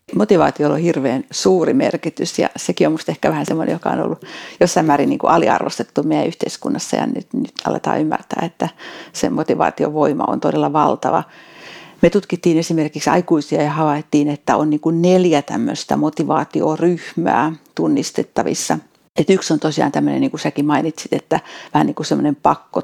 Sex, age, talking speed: female, 60-79, 155 wpm